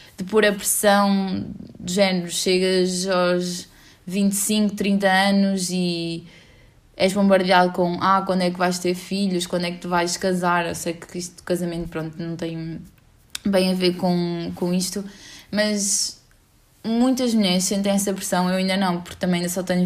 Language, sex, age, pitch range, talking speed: English, female, 20-39, 180-205 Hz, 170 wpm